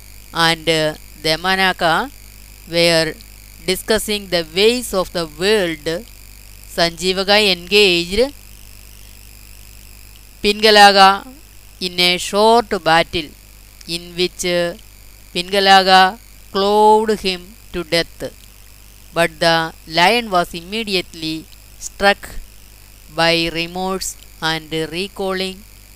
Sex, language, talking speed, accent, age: female, Malayalam, 75 wpm, native, 20-39